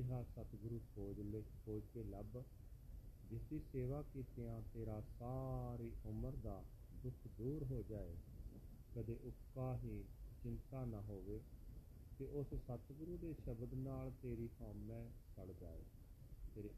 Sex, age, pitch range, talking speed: male, 40-59, 105-120 Hz, 130 wpm